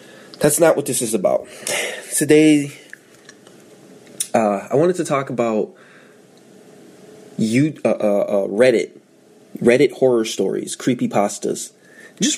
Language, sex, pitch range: English, male, 110-175 Hz